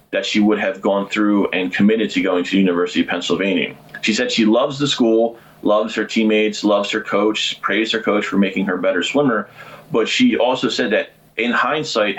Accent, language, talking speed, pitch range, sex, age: American, English, 210 wpm, 95-120 Hz, male, 30-49